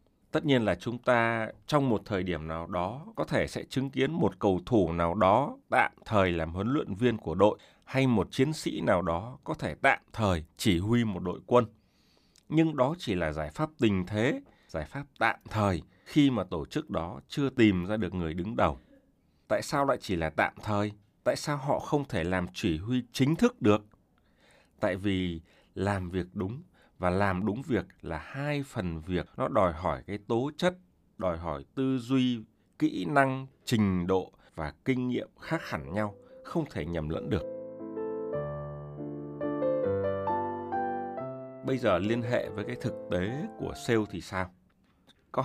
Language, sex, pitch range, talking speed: Vietnamese, male, 90-130 Hz, 180 wpm